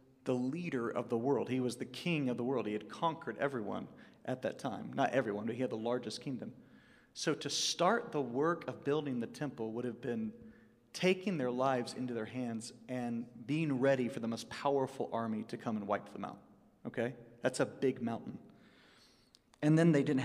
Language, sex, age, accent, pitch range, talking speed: English, male, 40-59, American, 120-165 Hz, 200 wpm